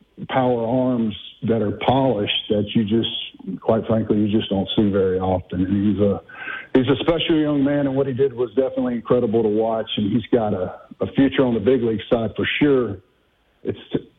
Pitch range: 105-125 Hz